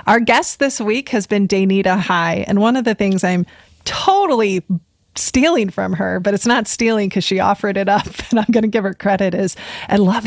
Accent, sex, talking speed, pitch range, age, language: American, female, 215 wpm, 185-230 Hz, 20-39, English